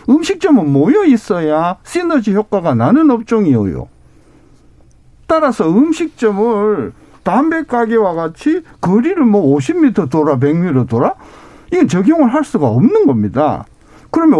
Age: 50-69